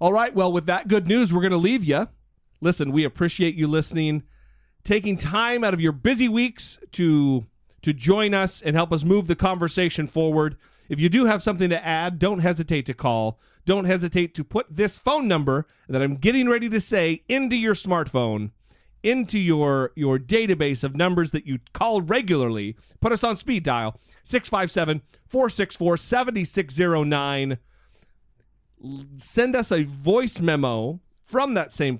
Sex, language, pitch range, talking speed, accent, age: male, English, 135-190 Hz, 160 wpm, American, 40-59